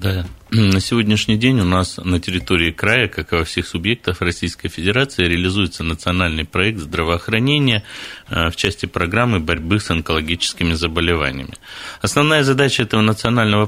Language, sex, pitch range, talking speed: Russian, male, 85-110 Hz, 135 wpm